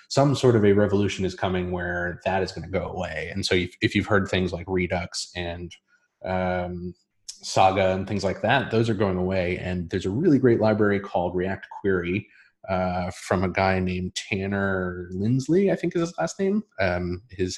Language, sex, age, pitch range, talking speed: English, male, 30-49, 90-105 Hz, 195 wpm